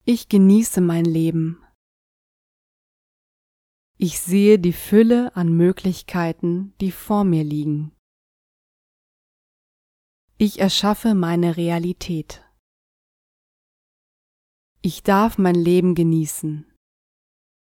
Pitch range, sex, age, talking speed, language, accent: 155-195 Hz, female, 30-49, 80 wpm, German, German